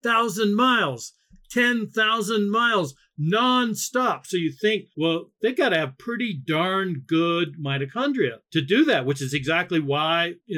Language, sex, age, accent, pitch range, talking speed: English, male, 50-69, American, 145-195 Hz, 150 wpm